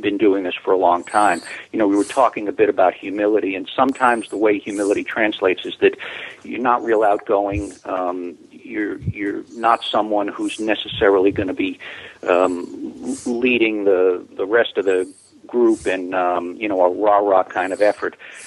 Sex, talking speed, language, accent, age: male, 180 wpm, English, American, 50-69